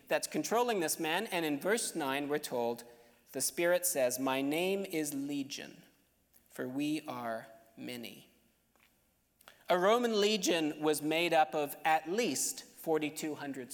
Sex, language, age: male, English, 40-59